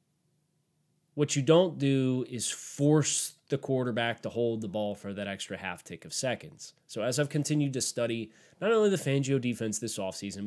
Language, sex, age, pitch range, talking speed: English, male, 30-49, 115-155 Hz, 180 wpm